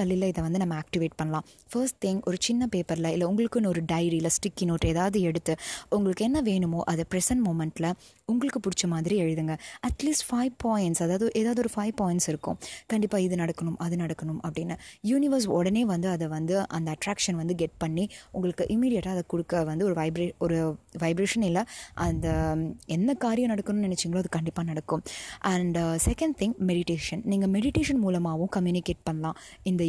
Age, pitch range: 20-39, 165-210 Hz